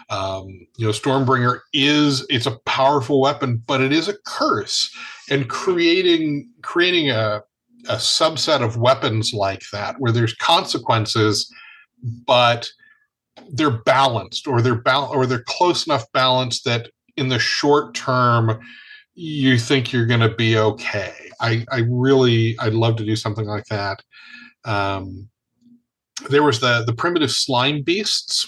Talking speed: 140 wpm